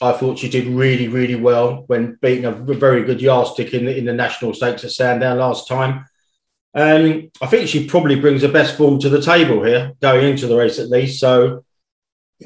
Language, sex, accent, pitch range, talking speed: English, male, British, 125-140 Hz, 210 wpm